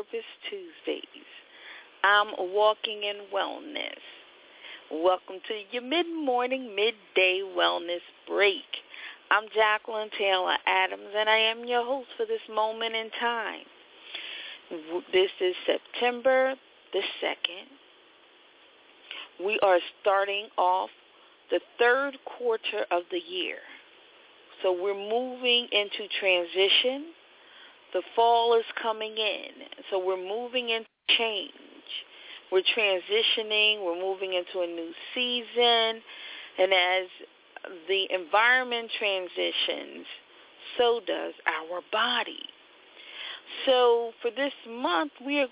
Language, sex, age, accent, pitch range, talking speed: English, female, 40-59, American, 195-265 Hz, 105 wpm